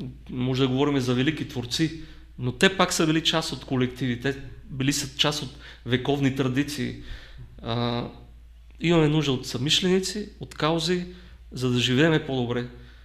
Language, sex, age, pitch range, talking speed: Bulgarian, male, 40-59, 120-160 Hz, 145 wpm